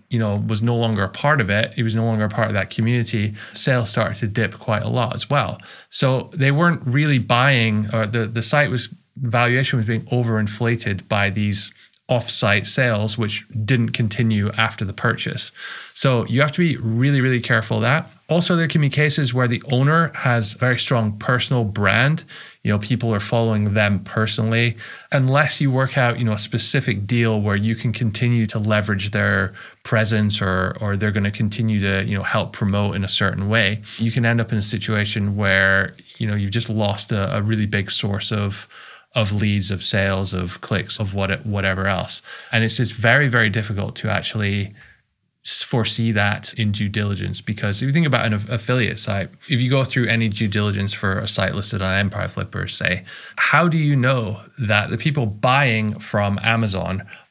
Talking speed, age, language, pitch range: 200 wpm, 20-39, English, 105-125 Hz